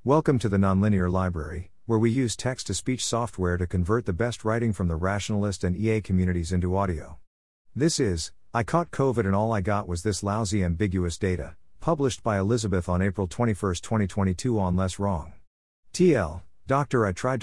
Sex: male